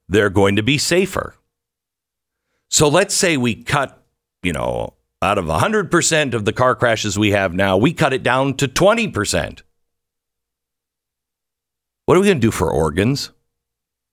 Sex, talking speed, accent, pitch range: male, 155 wpm, American, 115-190 Hz